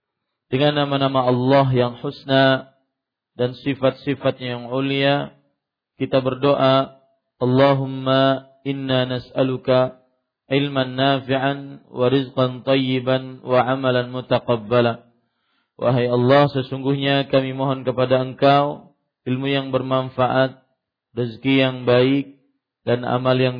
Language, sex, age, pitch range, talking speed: Malay, male, 40-59, 125-135 Hz, 95 wpm